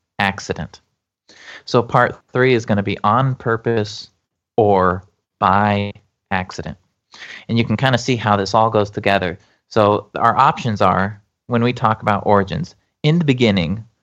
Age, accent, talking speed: 30-49, American, 155 wpm